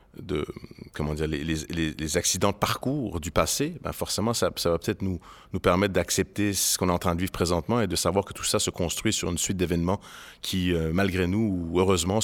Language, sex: French, male